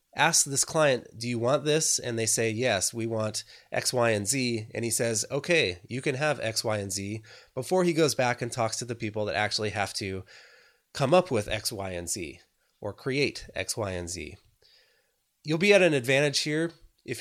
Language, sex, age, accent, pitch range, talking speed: English, male, 20-39, American, 110-135 Hz, 215 wpm